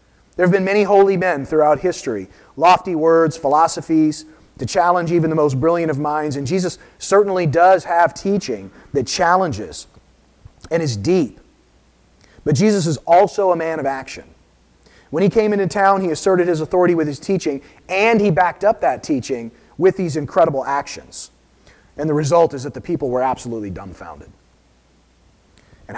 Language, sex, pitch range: English, male, 140-185 Hz